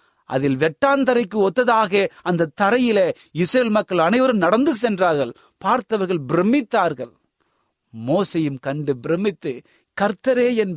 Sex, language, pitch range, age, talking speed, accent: male, Tamil, 130-200 Hz, 30-49, 95 wpm, native